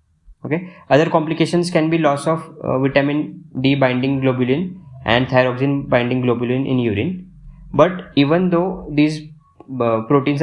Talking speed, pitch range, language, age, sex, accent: 140 wpm, 135-170 Hz, English, 20-39, male, Indian